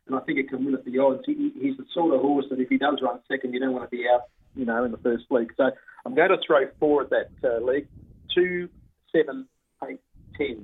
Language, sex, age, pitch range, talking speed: English, male, 40-59, 125-155 Hz, 260 wpm